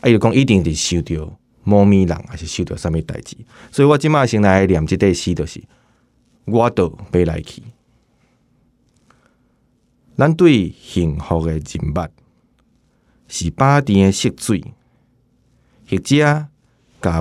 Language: Chinese